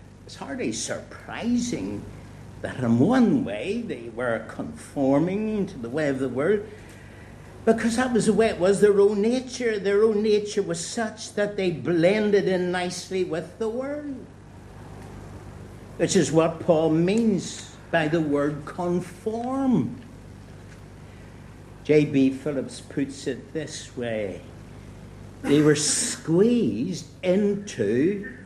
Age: 60-79